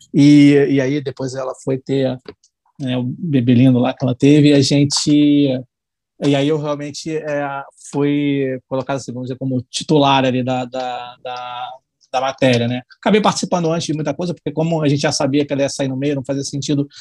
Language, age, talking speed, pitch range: Portuguese, 20-39, 200 wpm, 135-160 Hz